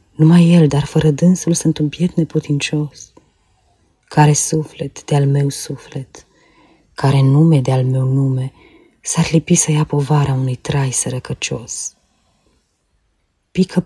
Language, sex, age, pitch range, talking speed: Romanian, female, 30-49, 135-160 Hz, 115 wpm